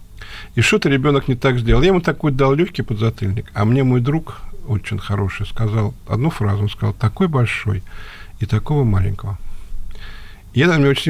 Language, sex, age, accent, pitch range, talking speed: Russian, male, 50-69, native, 105-135 Hz, 180 wpm